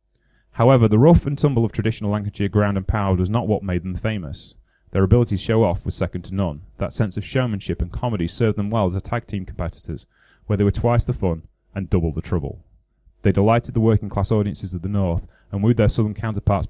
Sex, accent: male, British